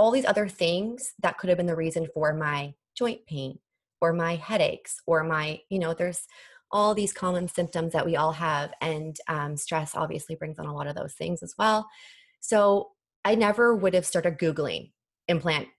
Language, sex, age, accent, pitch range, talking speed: English, female, 20-39, American, 160-190 Hz, 195 wpm